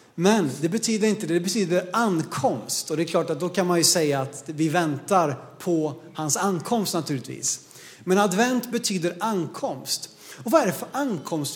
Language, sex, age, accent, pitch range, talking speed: Swedish, male, 30-49, native, 175-235 Hz, 180 wpm